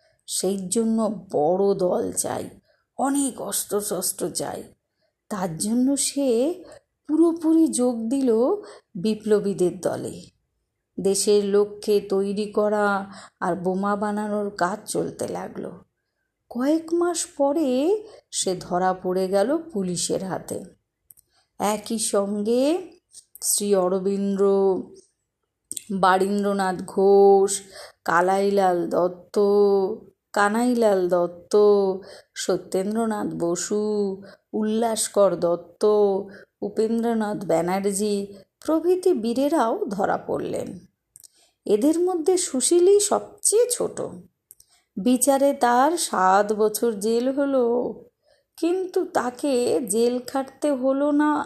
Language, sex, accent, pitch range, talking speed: Bengali, female, native, 195-275 Hz, 85 wpm